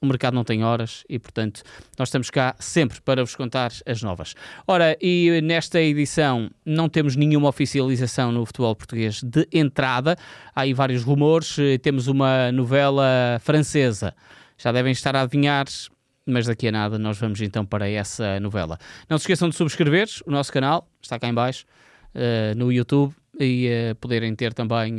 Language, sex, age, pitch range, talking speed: Portuguese, male, 20-39, 120-155 Hz, 170 wpm